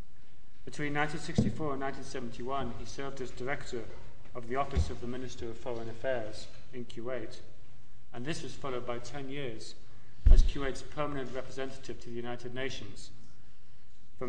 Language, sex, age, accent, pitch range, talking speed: English, male, 30-49, British, 115-130 Hz, 145 wpm